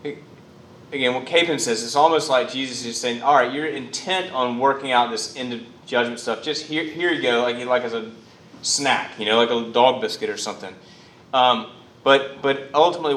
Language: English